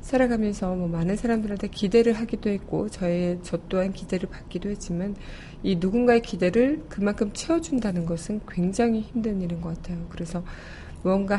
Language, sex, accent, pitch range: Korean, female, native, 175-220 Hz